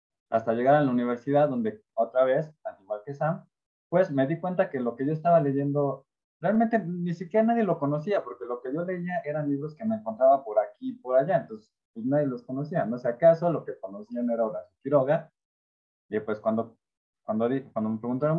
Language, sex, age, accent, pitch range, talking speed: Spanish, male, 20-39, Mexican, 110-175 Hz, 210 wpm